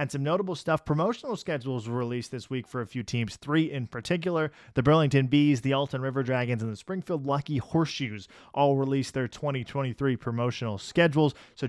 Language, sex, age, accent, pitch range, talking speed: English, male, 20-39, American, 125-155 Hz, 185 wpm